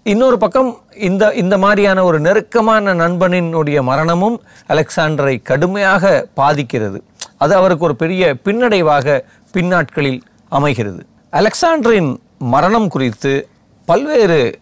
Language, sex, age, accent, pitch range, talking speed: Tamil, male, 40-59, native, 135-195 Hz, 95 wpm